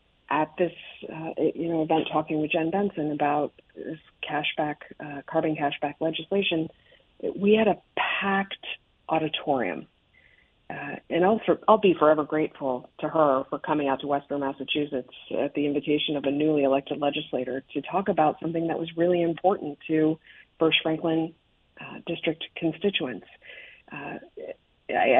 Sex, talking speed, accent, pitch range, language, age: female, 145 wpm, American, 145-175 Hz, English, 40-59